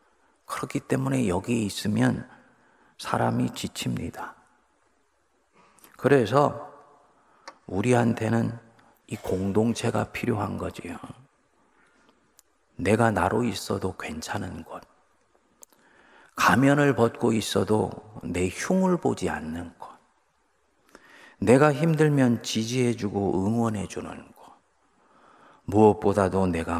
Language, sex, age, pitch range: Korean, male, 40-59, 95-130 Hz